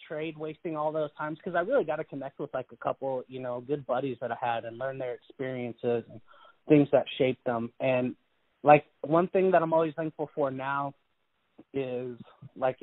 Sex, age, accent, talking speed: male, 30-49, American, 200 wpm